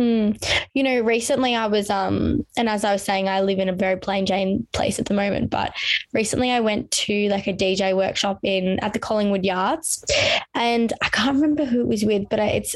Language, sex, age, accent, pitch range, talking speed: English, female, 20-39, Australian, 200-240 Hz, 215 wpm